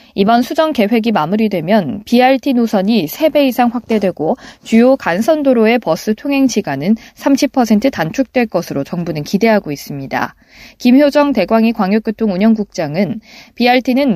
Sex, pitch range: female, 195-260 Hz